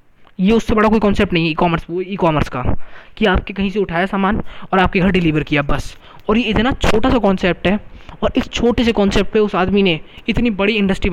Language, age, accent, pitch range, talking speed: Hindi, 20-39, native, 165-215 Hz, 225 wpm